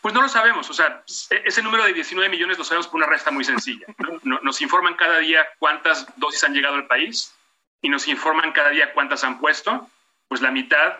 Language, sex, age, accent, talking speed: Spanish, male, 40-59, Mexican, 215 wpm